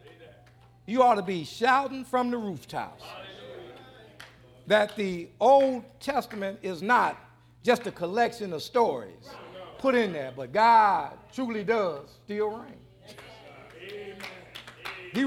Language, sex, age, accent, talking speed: English, male, 50-69, American, 115 wpm